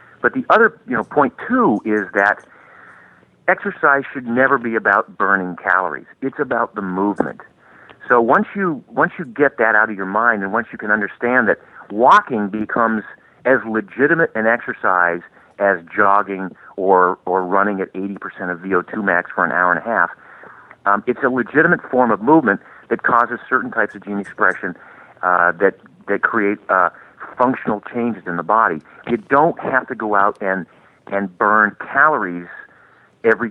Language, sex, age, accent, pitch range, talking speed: English, male, 50-69, American, 95-120 Hz, 170 wpm